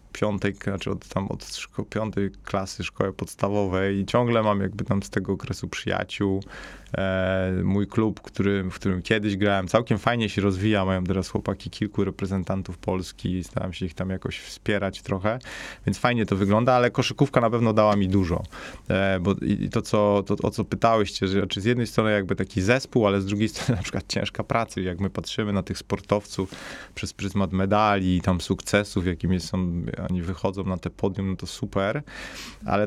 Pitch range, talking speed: 95-110 Hz, 170 wpm